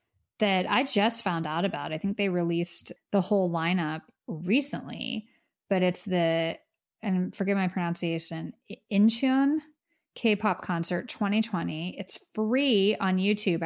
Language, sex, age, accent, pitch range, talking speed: English, female, 10-29, American, 185-225 Hz, 125 wpm